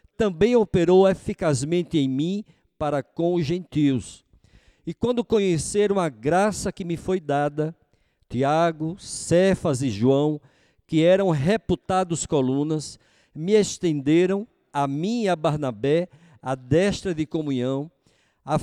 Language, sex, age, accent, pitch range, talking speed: Portuguese, male, 50-69, Brazilian, 145-195 Hz, 120 wpm